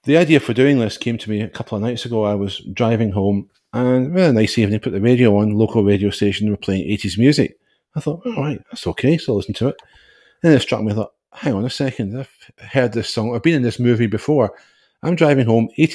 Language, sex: English, male